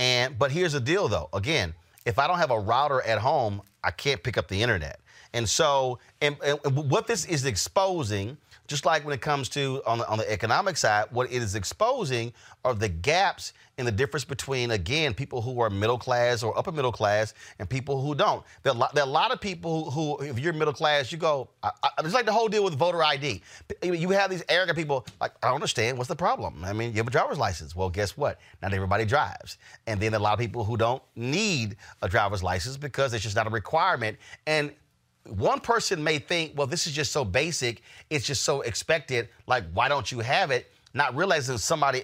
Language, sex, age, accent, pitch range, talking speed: English, male, 30-49, American, 110-145 Hz, 220 wpm